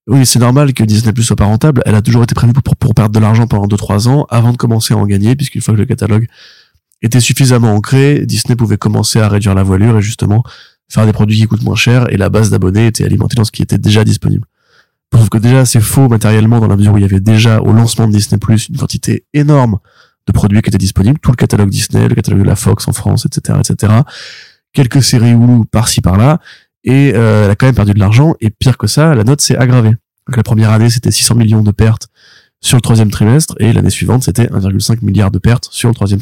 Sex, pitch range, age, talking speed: male, 105-125 Hz, 20-39, 245 wpm